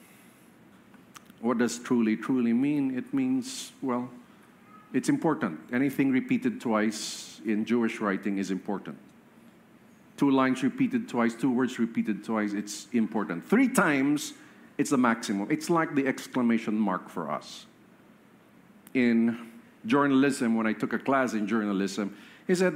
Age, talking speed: 50-69, 135 wpm